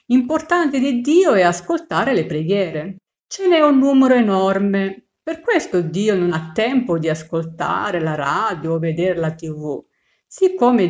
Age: 50-69